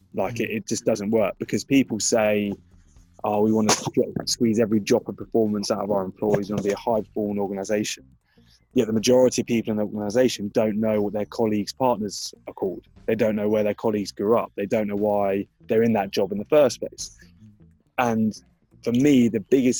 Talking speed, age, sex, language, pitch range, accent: 210 wpm, 20-39, male, English, 105-120 Hz, British